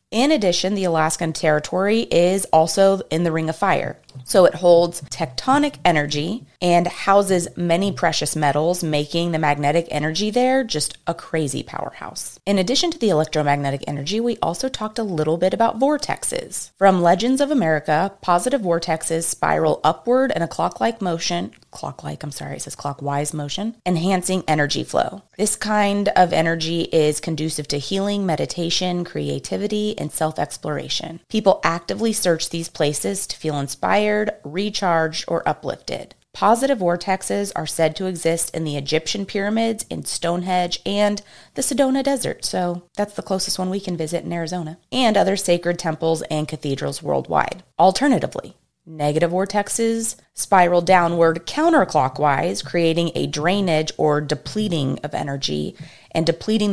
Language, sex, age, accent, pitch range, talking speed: English, female, 30-49, American, 155-200 Hz, 145 wpm